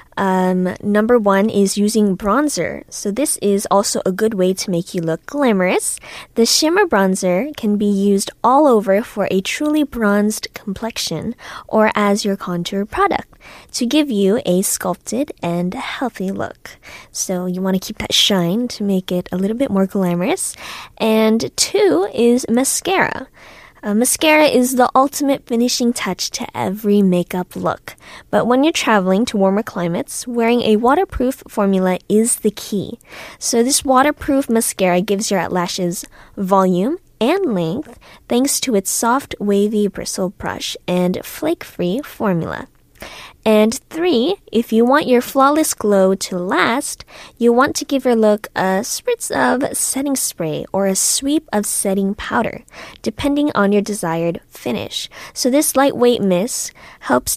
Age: 20-39